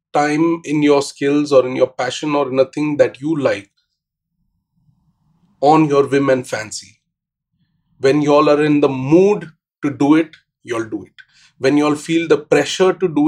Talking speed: 175 wpm